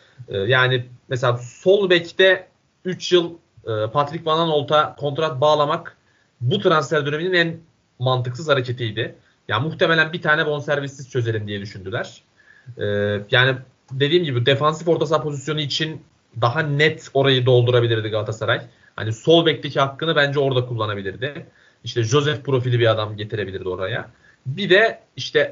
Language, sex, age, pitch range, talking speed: Turkish, male, 30-49, 120-155 Hz, 130 wpm